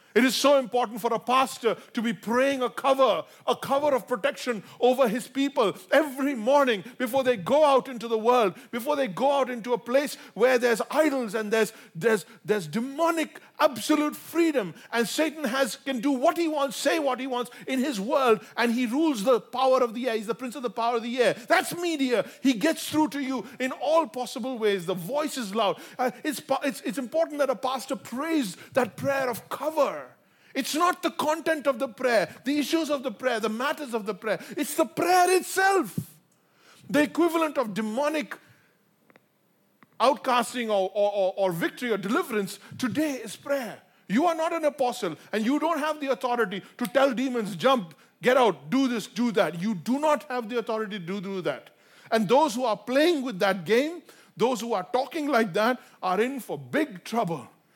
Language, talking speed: English, 195 wpm